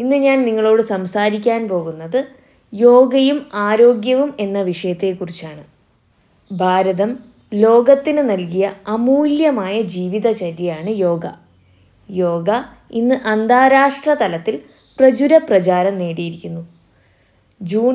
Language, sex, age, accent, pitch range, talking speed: Malayalam, female, 20-39, native, 180-250 Hz, 75 wpm